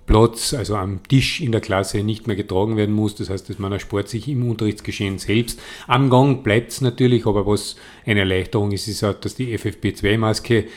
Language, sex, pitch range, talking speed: German, male, 100-115 Hz, 205 wpm